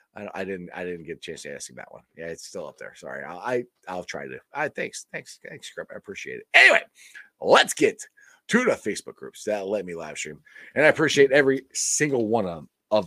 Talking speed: 235 wpm